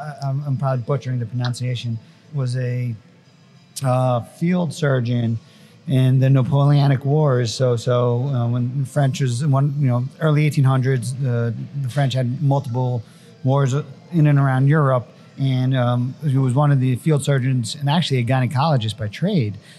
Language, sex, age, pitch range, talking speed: English, male, 40-59, 125-145 Hz, 155 wpm